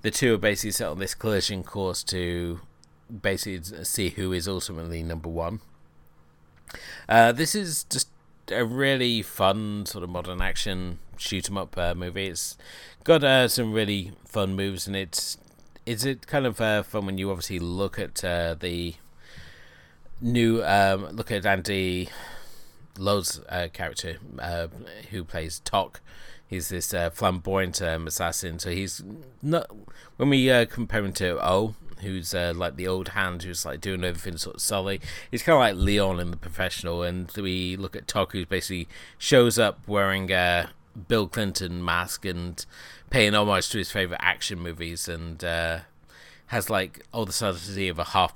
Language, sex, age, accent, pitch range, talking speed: English, male, 30-49, British, 85-105 Hz, 165 wpm